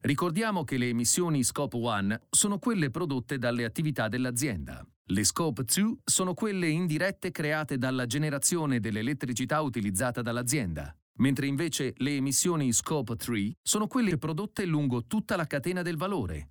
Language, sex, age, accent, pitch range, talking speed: Italian, male, 40-59, native, 120-160 Hz, 140 wpm